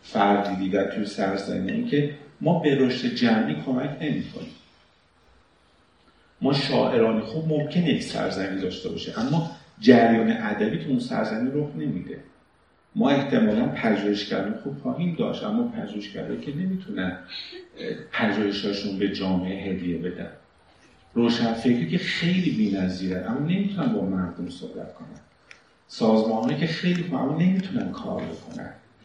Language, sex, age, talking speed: Persian, male, 50-69, 130 wpm